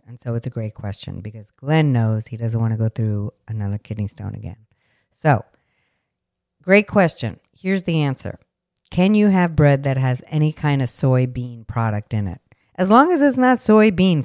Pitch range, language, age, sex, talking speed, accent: 120-175 Hz, English, 50-69, female, 185 wpm, American